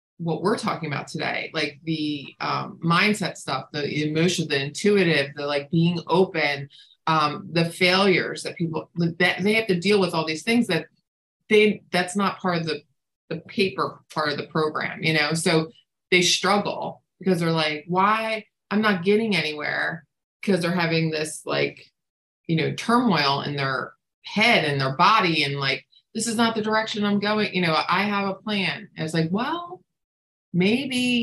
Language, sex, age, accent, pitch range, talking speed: English, female, 30-49, American, 155-195 Hz, 175 wpm